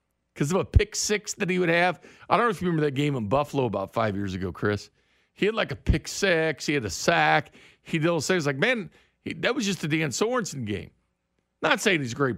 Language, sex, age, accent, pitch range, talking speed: English, male, 50-69, American, 125-180 Hz, 270 wpm